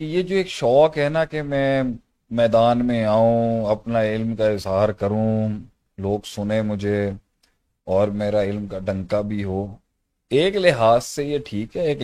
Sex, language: male, Urdu